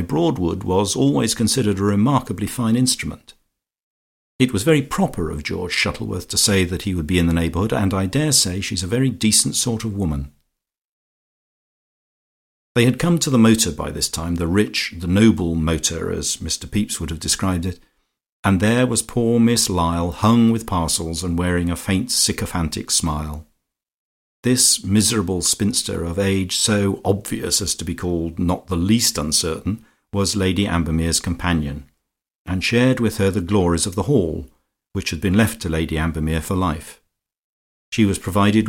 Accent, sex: British, male